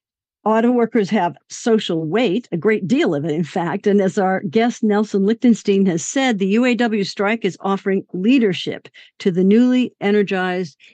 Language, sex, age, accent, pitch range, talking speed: English, female, 50-69, American, 185-230 Hz, 165 wpm